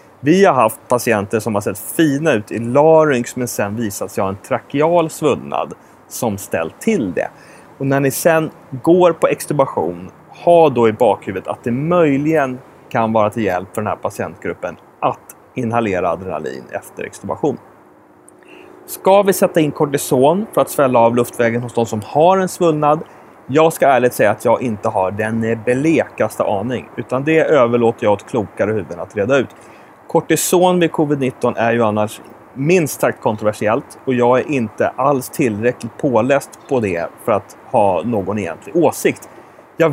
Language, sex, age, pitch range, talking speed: English, male, 30-49, 115-155 Hz, 170 wpm